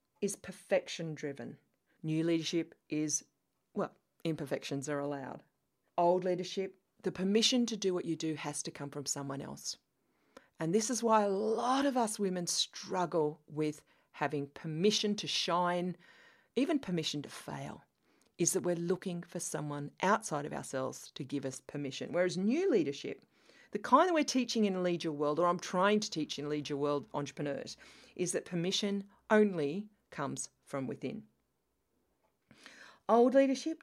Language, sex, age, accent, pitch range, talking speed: English, female, 40-59, Australian, 150-205 Hz, 155 wpm